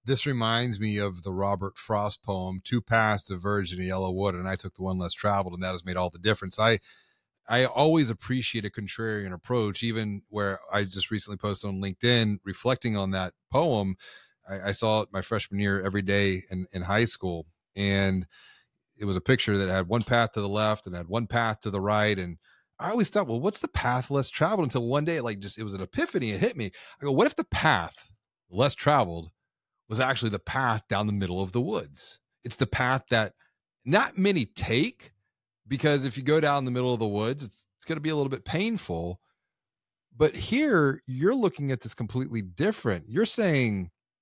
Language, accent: English, American